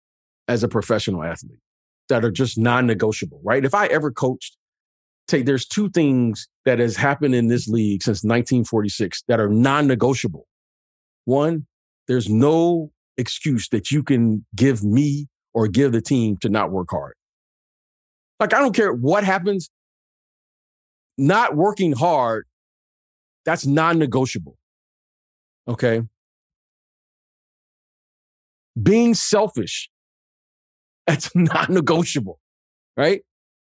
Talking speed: 110 wpm